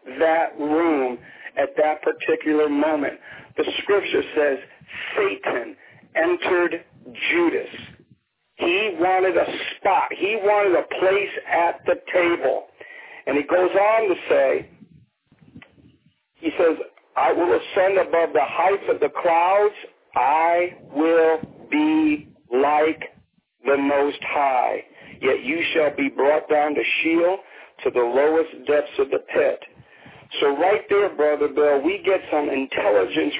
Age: 50-69